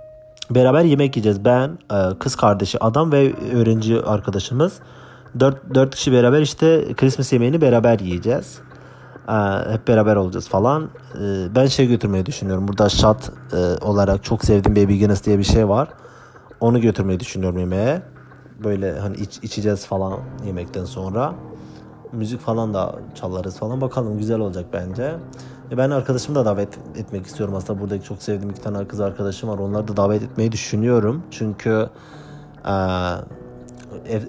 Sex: male